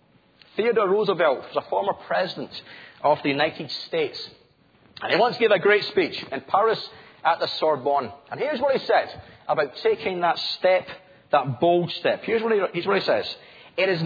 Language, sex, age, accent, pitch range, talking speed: English, male, 40-59, British, 180-240 Hz, 190 wpm